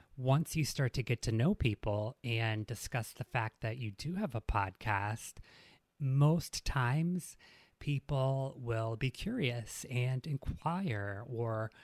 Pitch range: 115-140 Hz